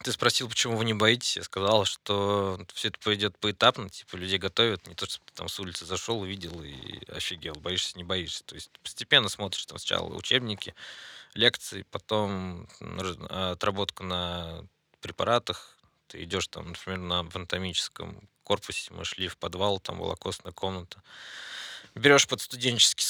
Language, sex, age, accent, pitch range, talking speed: Russian, male, 20-39, native, 90-110 Hz, 155 wpm